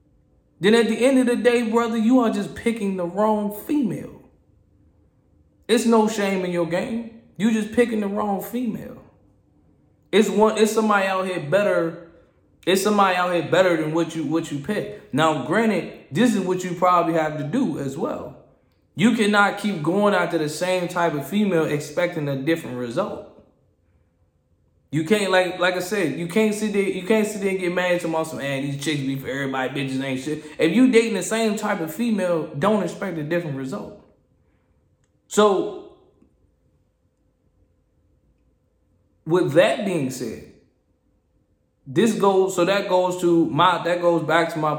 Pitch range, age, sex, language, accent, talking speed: 155-210 Hz, 20-39, male, English, American, 175 wpm